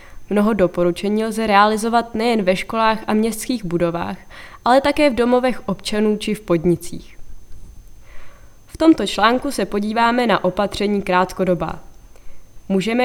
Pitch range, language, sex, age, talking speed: 185-235 Hz, Czech, female, 20-39, 125 wpm